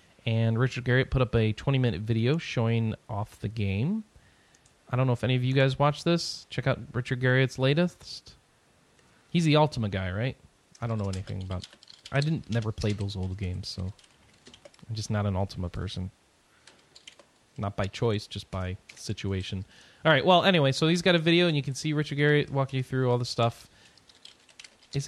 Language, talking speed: English, 190 wpm